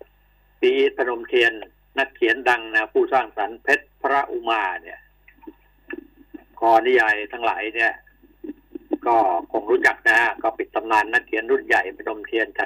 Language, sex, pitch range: Thai, male, 315-410 Hz